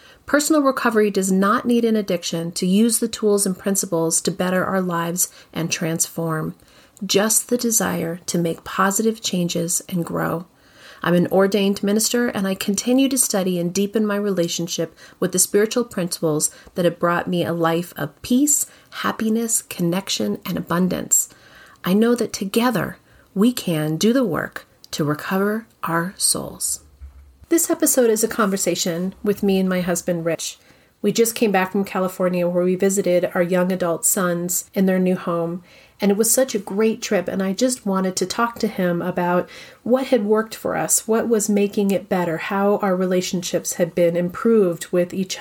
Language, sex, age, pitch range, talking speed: English, female, 40-59, 175-215 Hz, 175 wpm